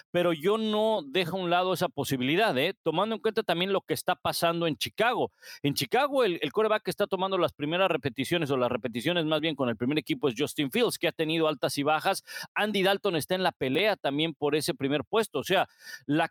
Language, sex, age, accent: Spanish, male, 40-59, Mexican